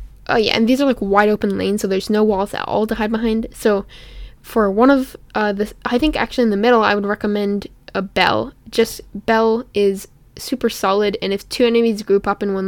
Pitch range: 200-225 Hz